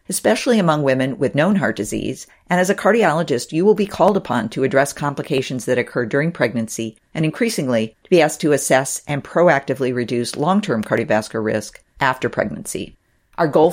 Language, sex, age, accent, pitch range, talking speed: English, female, 50-69, American, 130-170 Hz, 175 wpm